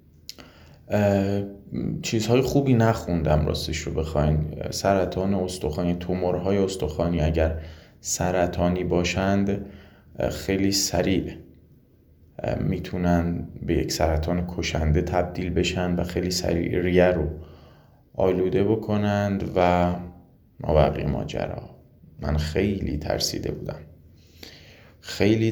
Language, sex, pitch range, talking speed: Persian, male, 85-100 Hz, 85 wpm